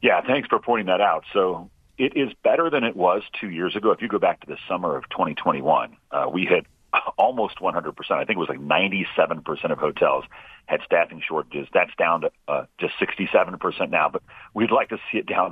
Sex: male